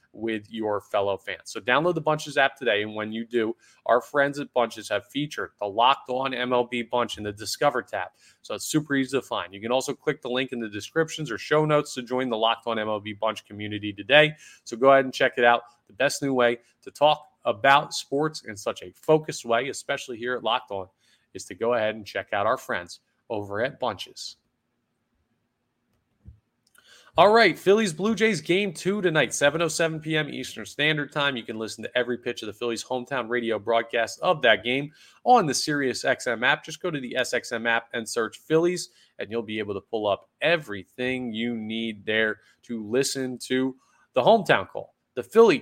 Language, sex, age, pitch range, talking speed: English, male, 30-49, 110-145 Hz, 200 wpm